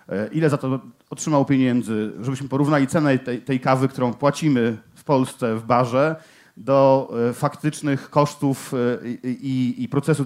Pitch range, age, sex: 125-145 Hz, 40-59, male